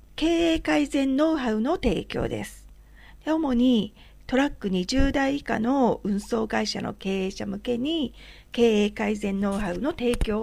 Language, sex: Japanese, female